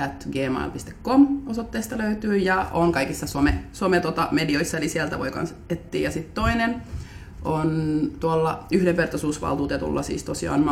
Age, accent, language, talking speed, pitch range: 30-49, native, Finnish, 125 wpm, 145-200 Hz